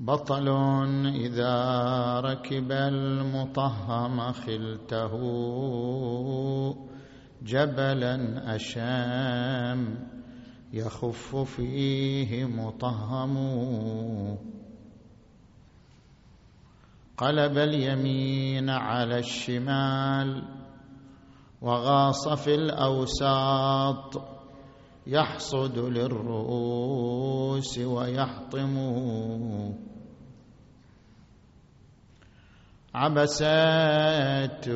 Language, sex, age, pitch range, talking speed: Arabic, male, 50-69, 120-135 Hz, 35 wpm